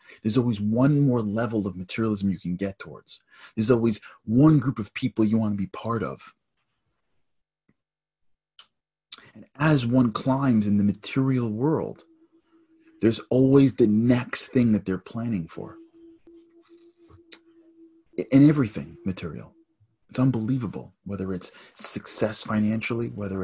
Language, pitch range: English, 105-135 Hz